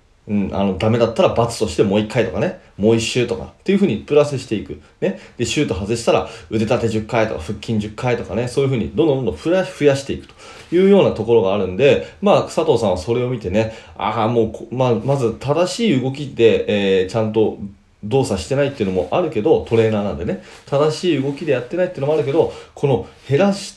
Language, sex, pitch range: Japanese, male, 110-150 Hz